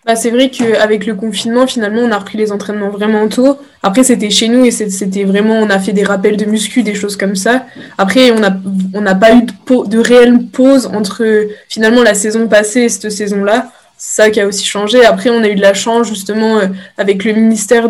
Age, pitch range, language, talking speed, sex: 20-39, 200-225 Hz, French, 225 wpm, female